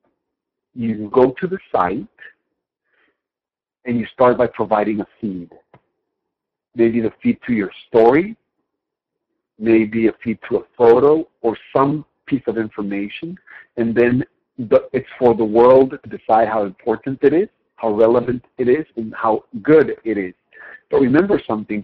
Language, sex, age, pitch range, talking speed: English, male, 60-79, 115-175 Hz, 145 wpm